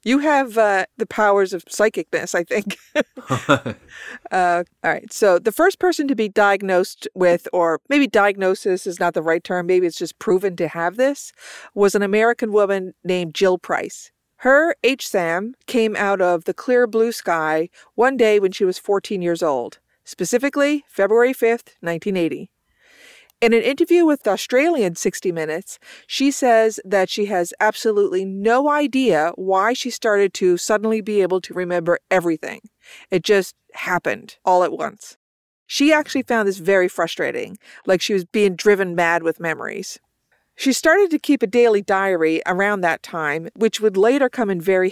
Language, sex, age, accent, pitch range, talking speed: English, female, 40-59, American, 180-235 Hz, 170 wpm